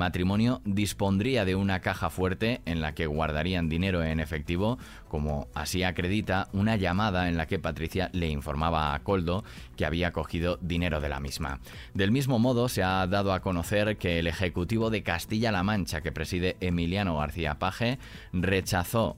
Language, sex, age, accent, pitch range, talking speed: Spanish, male, 20-39, Spanish, 80-100 Hz, 165 wpm